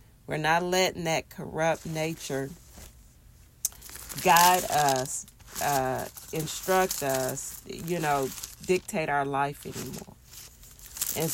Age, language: 40-59, English